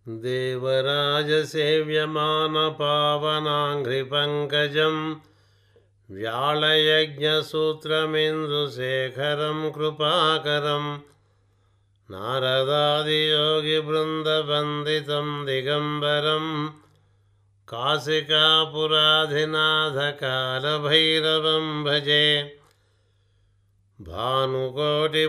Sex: male